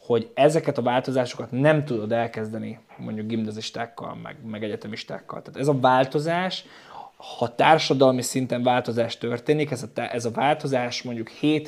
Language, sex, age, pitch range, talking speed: Hungarian, male, 20-39, 120-145 Hz, 145 wpm